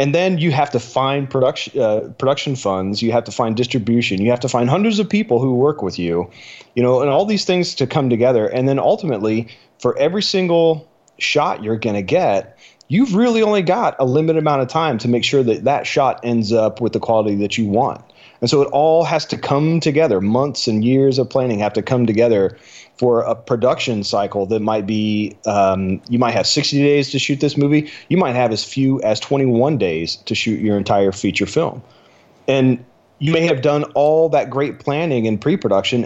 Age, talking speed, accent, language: 30-49, 215 wpm, American, English